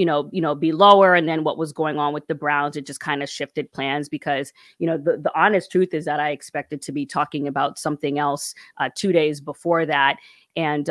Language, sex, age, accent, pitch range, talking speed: English, female, 20-39, American, 145-165 Hz, 240 wpm